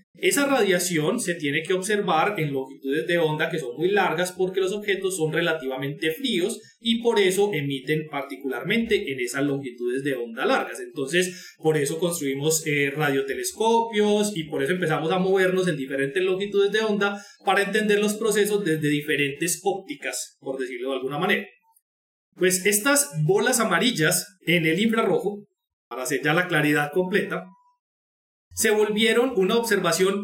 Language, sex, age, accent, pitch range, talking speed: Spanish, male, 30-49, Colombian, 155-225 Hz, 155 wpm